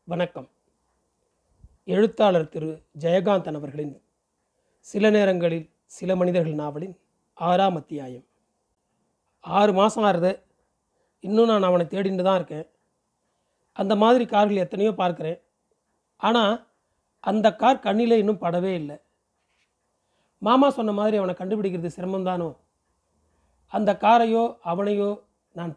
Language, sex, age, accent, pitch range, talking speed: Tamil, male, 40-59, native, 165-210 Hz, 100 wpm